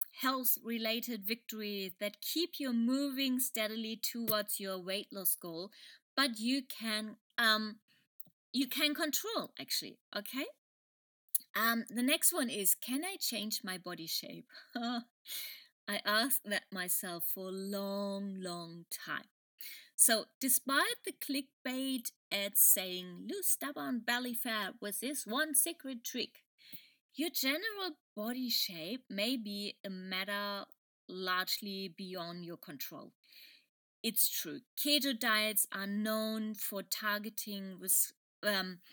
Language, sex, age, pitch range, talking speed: English, female, 20-39, 200-260 Hz, 120 wpm